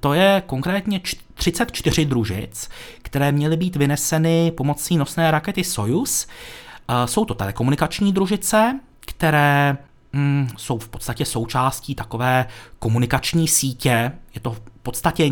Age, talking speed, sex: 30-49, 115 wpm, male